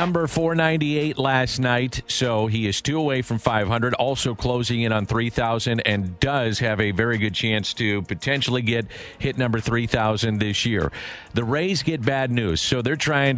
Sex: male